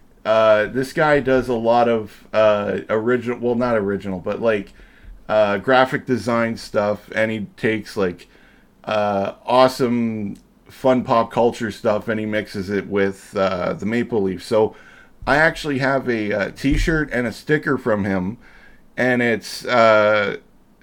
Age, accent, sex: 40-59, American, male